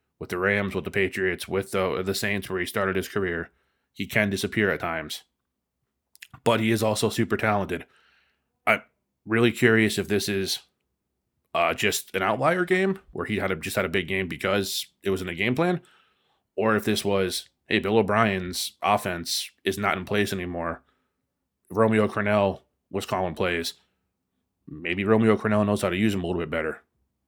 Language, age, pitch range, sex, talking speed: English, 20-39, 95-110 Hz, male, 185 wpm